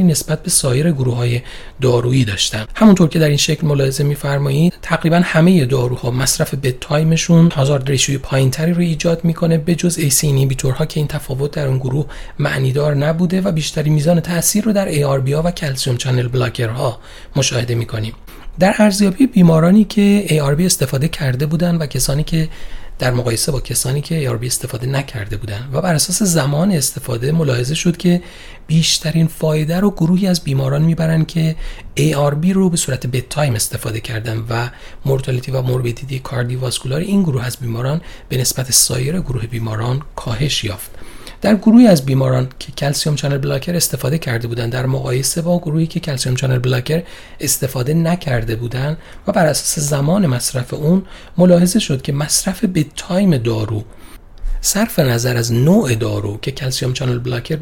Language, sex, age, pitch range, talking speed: Persian, male, 30-49, 125-165 Hz, 160 wpm